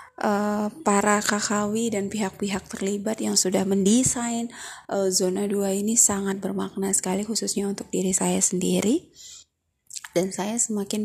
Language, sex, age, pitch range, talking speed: Indonesian, female, 20-39, 195-230 Hz, 130 wpm